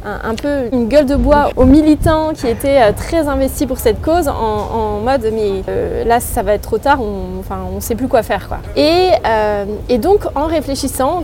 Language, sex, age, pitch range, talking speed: French, female, 20-39, 245-300 Hz, 200 wpm